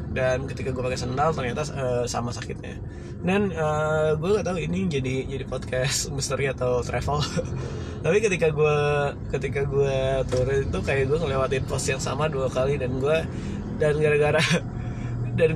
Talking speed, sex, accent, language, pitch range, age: 160 wpm, male, native, Indonesian, 125-155 Hz, 20-39